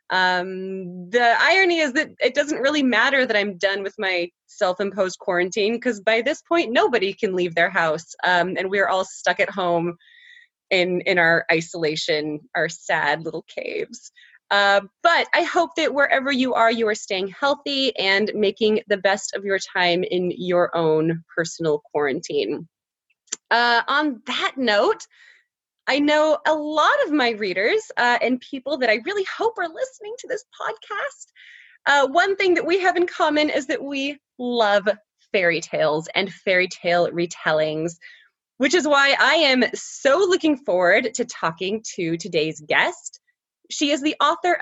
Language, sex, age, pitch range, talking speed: English, female, 20-39, 185-310 Hz, 165 wpm